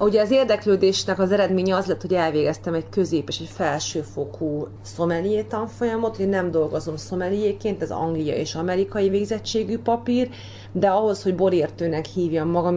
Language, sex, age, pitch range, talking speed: Hungarian, female, 30-49, 150-195 Hz, 150 wpm